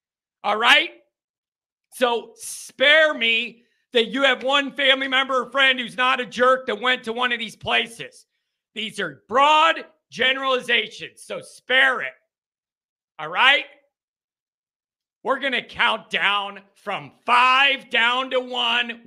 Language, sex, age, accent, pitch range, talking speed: English, male, 40-59, American, 200-260 Hz, 130 wpm